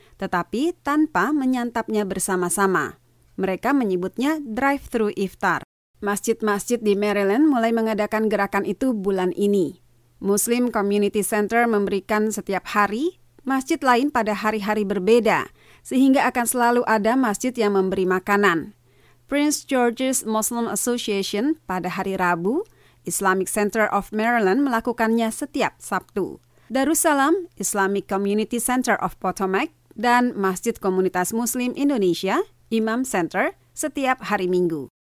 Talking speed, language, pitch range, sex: 115 wpm, Indonesian, 190-250 Hz, female